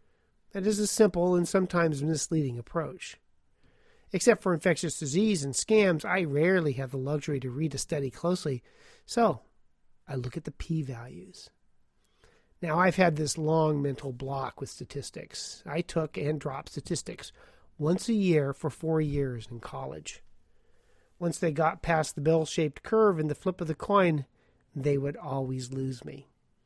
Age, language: 40-59, English